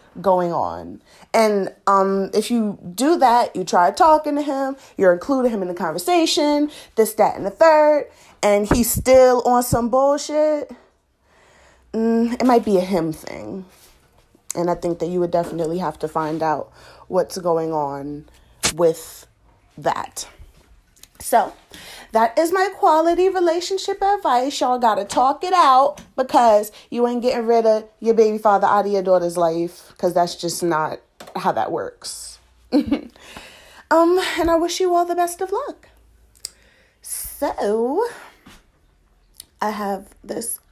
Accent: American